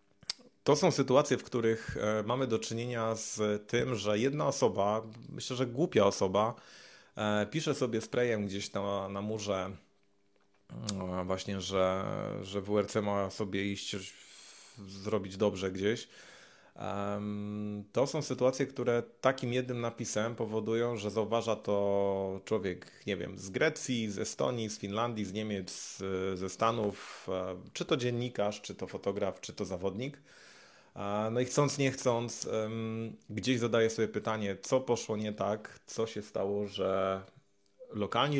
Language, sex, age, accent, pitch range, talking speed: Polish, male, 30-49, native, 100-120 Hz, 135 wpm